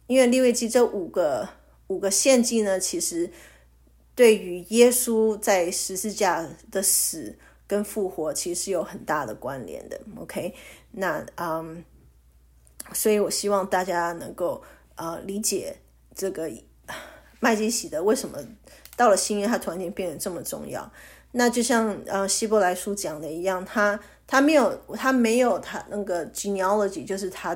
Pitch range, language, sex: 185-235 Hz, English, female